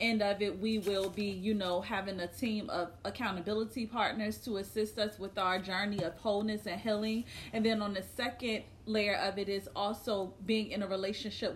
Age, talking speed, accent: 30-49, 195 wpm, American